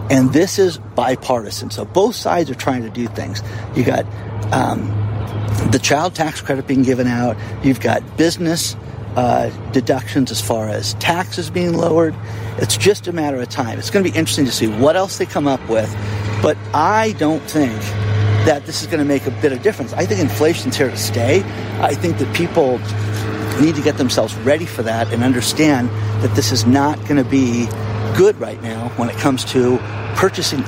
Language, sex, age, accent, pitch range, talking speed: English, male, 50-69, American, 110-140 Hz, 195 wpm